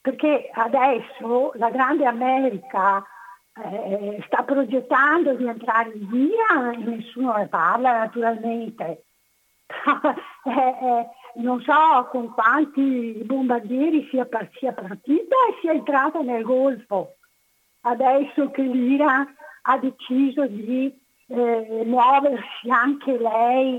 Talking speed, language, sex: 105 wpm, Italian, female